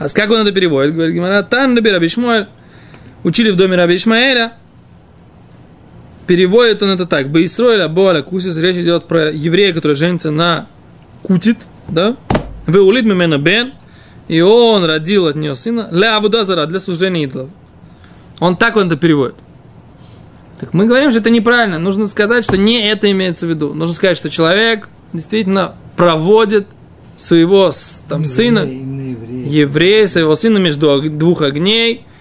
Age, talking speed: 20-39, 150 wpm